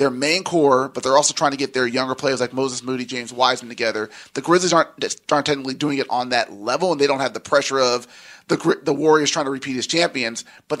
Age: 30-49